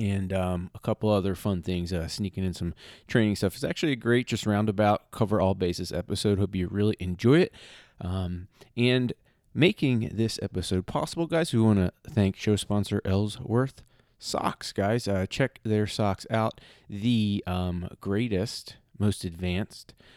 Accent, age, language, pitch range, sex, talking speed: American, 30-49, English, 95-120 Hz, male, 160 wpm